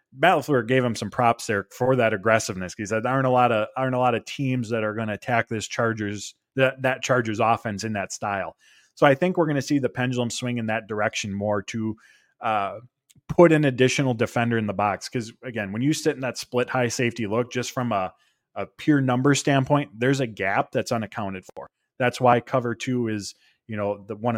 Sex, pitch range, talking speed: male, 110-135 Hz, 220 wpm